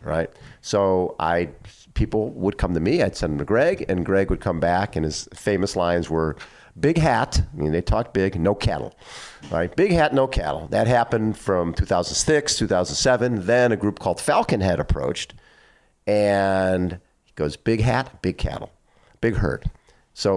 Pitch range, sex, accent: 85-105 Hz, male, American